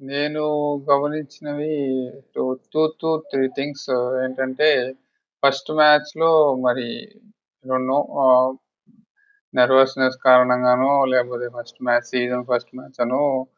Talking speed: 90 wpm